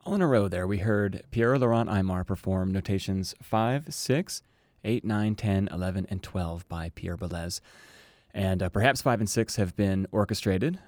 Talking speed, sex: 175 wpm, male